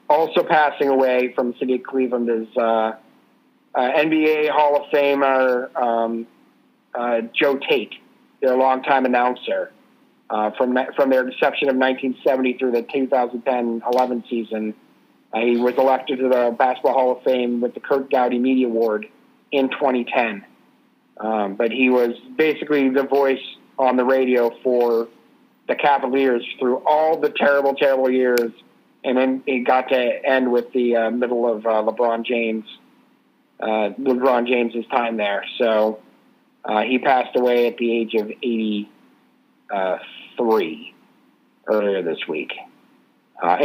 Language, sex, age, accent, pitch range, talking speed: English, male, 40-59, American, 120-135 Hz, 140 wpm